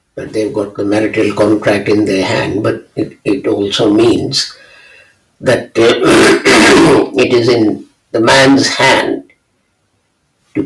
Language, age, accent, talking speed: English, 50-69, Indian, 125 wpm